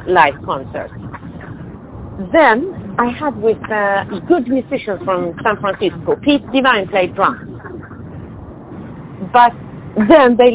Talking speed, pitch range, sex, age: 110 wpm, 185-235 Hz, female, 40-59